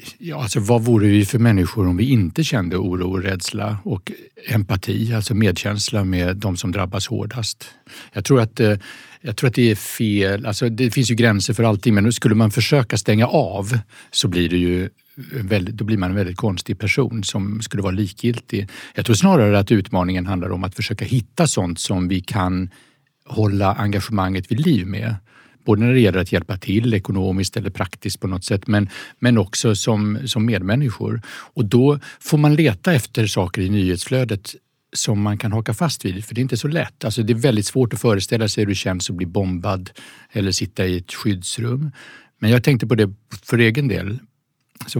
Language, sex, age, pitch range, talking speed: Swedish, male, 60-79, 100-120 Hz, 195 wpm